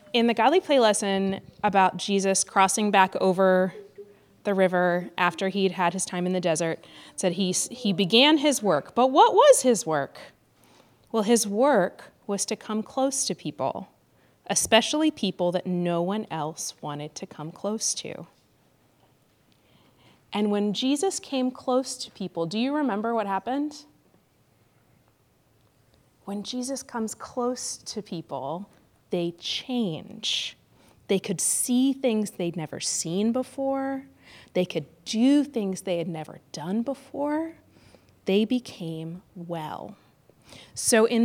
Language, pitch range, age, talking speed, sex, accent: English, 185-250 Hz, 30-49, 135 wpm, female, American